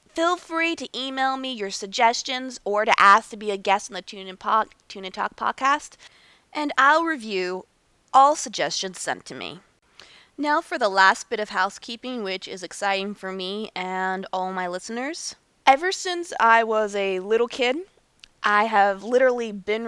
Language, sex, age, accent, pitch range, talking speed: English, female, 20-39, American, 195-260 Hz, 170 wpm